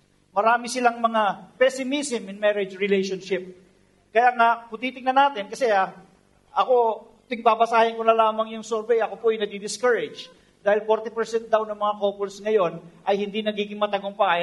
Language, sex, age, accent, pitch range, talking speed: English, male, 50-69, Filipino, 215-265 Hz, 145 wpm